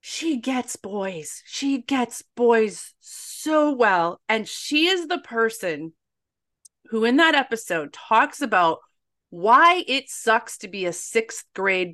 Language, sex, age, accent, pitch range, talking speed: English, female, 30-49, American, 190-275 Hz, 135 wpm